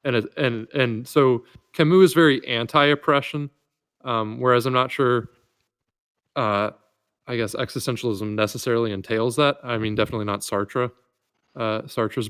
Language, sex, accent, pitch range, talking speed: English, male, American, 105-130 Hz, 130 wpm